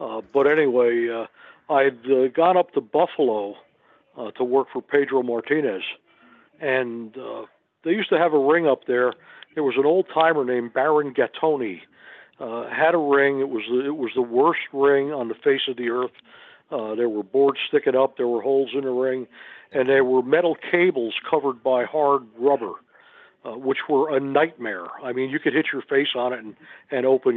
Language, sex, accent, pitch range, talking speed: English, male, American, 130-165 Hz, 195 wpm